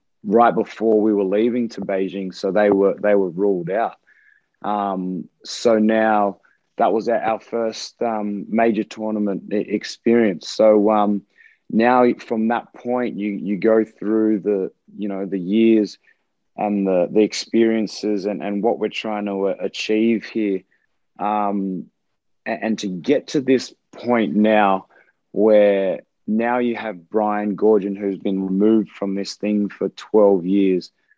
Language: English